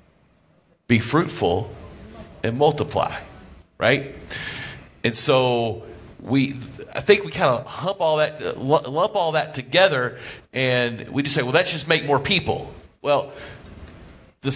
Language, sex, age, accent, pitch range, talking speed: English, male, 40-59, American, 120-155 Hz, 120 wpm